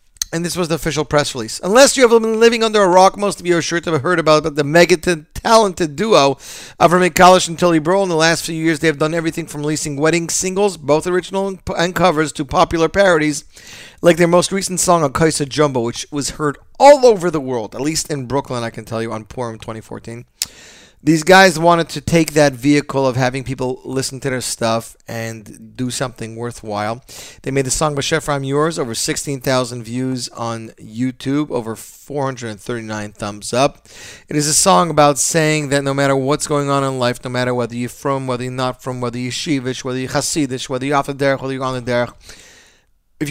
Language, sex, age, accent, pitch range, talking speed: English, male, 40-59, American, 125-165 Hz, 210 wpm